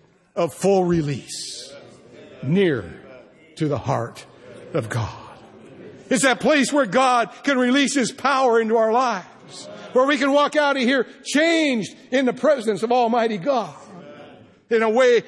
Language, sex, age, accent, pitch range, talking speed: English, male, 60-79, American, 175-285 Hz, 150 wpm